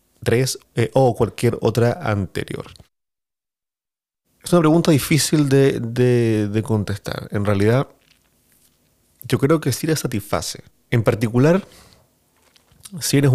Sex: male